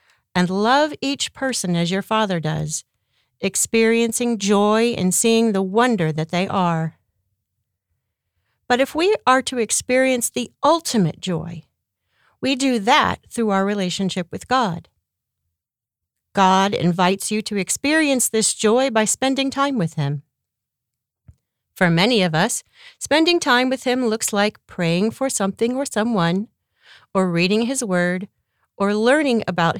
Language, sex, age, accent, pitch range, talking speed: English, female, 40-59, American, 160-245 Hz, 135 wpm